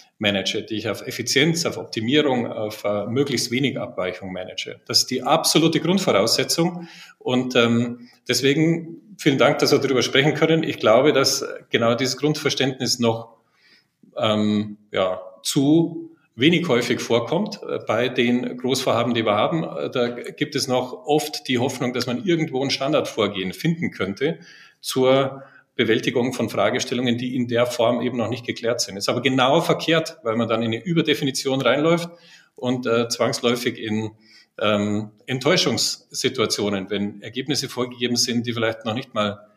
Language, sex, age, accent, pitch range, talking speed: German, male, 40-59, German, 110-135 Hz, 150 wpm